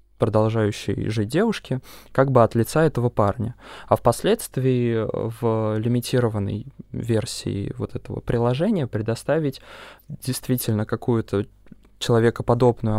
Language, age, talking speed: Russian, 20-39, 95 wpm